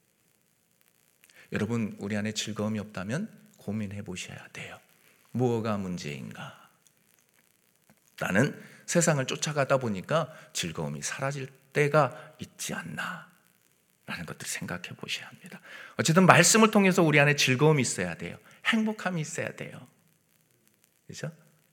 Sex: male